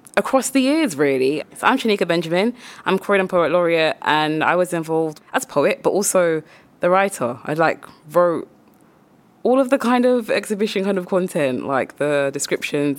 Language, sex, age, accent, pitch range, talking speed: English, female, 20-39, British, 140-190 Hz, 175 wpm